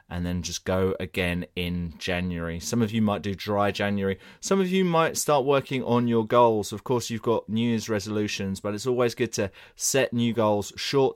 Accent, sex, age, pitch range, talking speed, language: British, male, 20-39, 95-125 Hz, 210 wpm, English